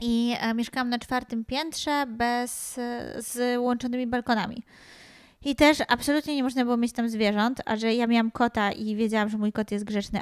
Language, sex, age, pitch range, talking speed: Polish, female, 20-39, 210-245 Hz, 175 wpm